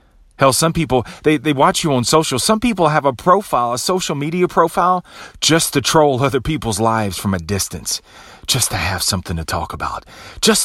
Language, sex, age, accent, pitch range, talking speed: English, male, 40-59, American, 85-145 Hz, 195 wpm